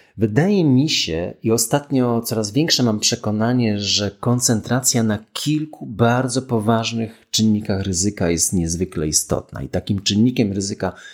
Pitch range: 90-120 Hz